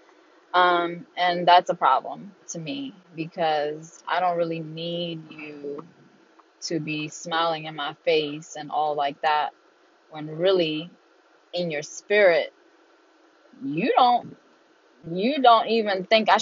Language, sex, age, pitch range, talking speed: Amharic, female, 20-39, 160-220 Hz, 130 wpm